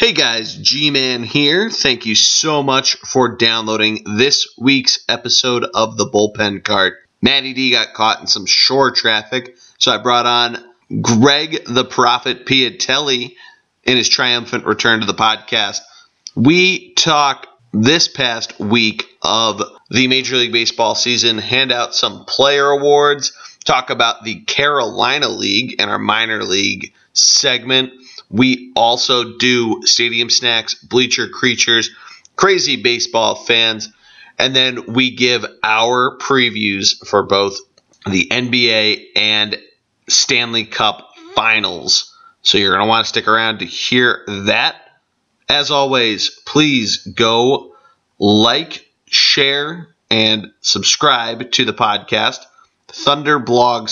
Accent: American